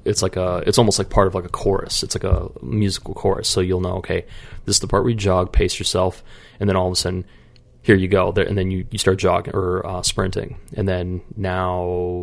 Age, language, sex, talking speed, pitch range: 20-39, English, male, 250 wpm, 90-100 Hz